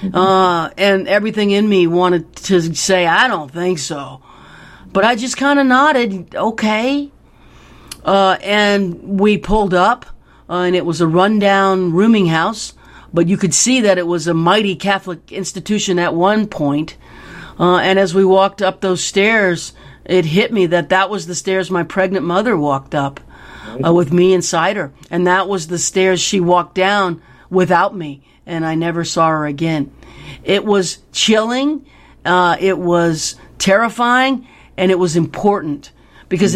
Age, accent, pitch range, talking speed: 40-59, American, 175-210 Hz, 165 wpm